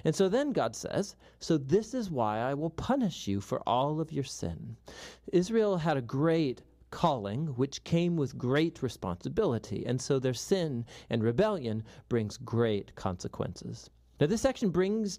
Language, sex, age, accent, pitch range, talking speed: English, male, 40-59, American, 115-175 Hz, 160 wpm